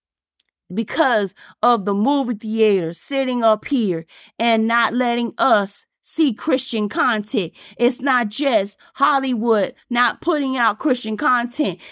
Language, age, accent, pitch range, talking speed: English, 40-59, American, 235-375 Hz, 120 wpm